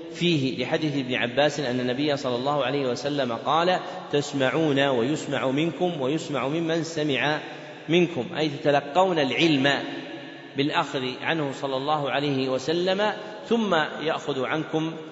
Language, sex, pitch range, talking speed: Arabic, male, 140-165 Hz, 120 wpm